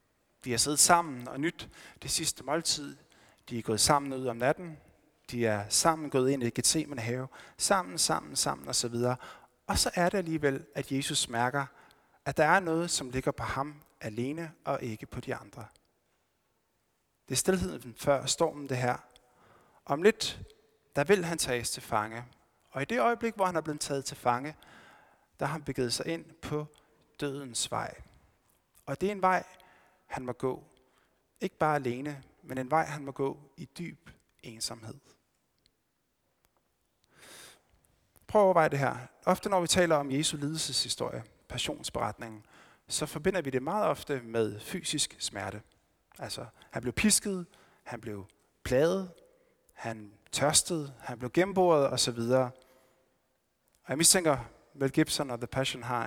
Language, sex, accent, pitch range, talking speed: Danish, male, native, 120-160 Hz, 160 wpm